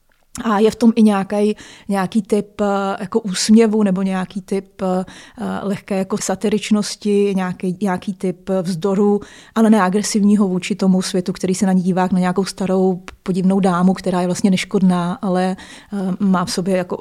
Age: 30-49